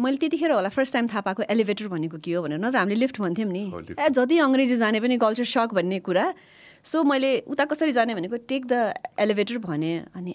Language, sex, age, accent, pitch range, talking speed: English, female, 30-49, Indian, 185-265 Hz, 180 wpm